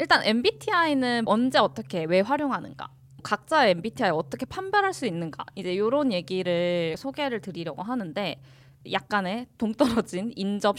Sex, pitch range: female, 175-260 Hz